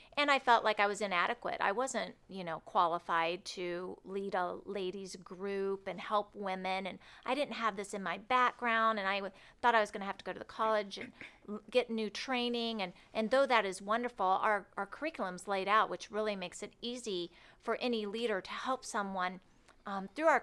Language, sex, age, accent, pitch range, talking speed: English, female, 40-59, American, 195-235 Hz, 205 wpm